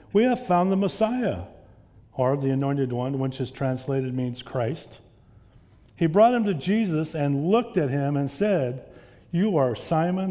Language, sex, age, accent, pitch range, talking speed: English, male, 50-69, American, 110-155 Hz, 165 wpm